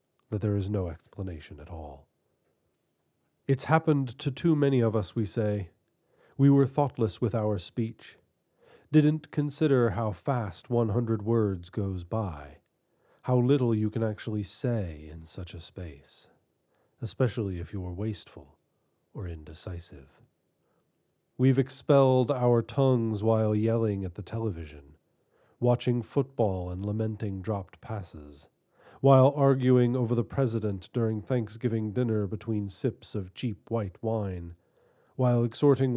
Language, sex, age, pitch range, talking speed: English, male, 40-59, 95-125 Hz, 125 wpm